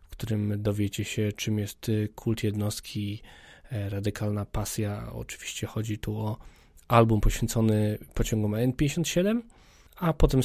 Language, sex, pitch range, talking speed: Polish, male, 105-125 Hz, 115 wpm